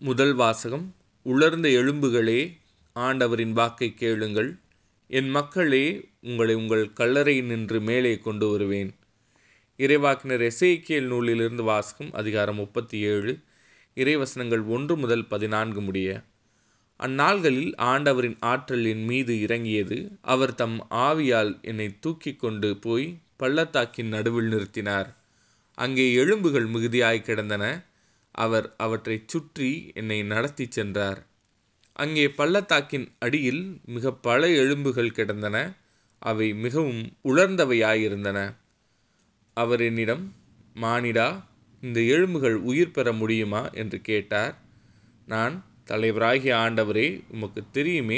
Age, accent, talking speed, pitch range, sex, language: 20-39, native, 100 wpm, 110-130 Hz, male, Tamil